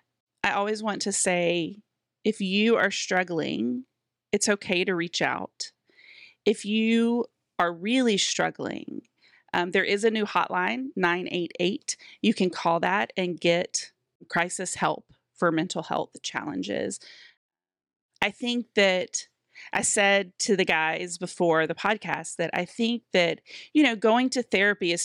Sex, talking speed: female, 140 wpm